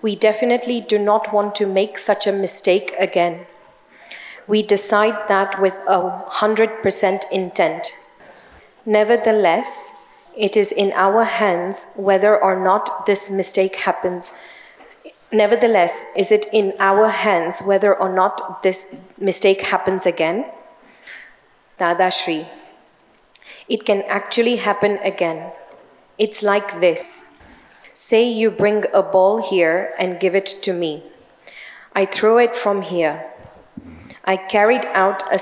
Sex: female